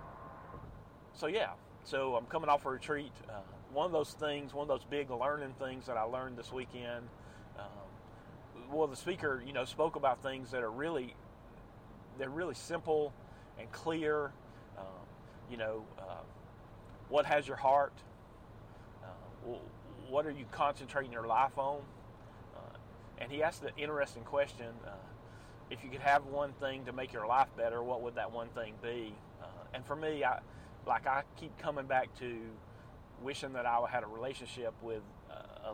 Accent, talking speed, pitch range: American, 170 wpm, 115-135 Hz